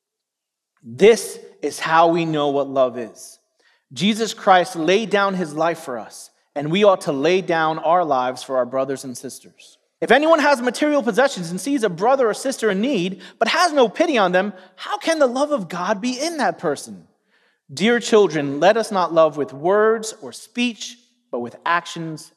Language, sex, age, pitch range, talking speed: English, male, 30-49, 170-250 Hz, 190 wpm